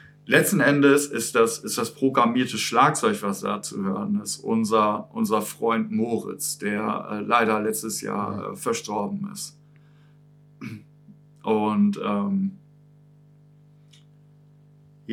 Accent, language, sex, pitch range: German, German, male, 115-155 Hz